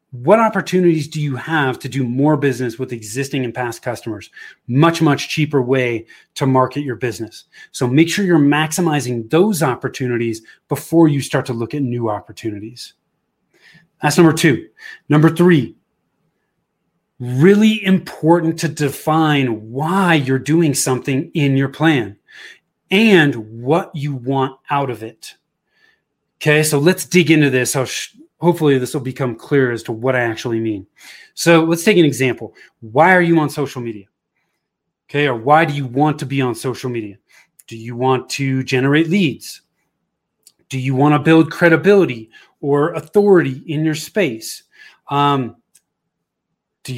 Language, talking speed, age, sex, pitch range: English, 150 wpm, 30-49, male, 125-165 Hz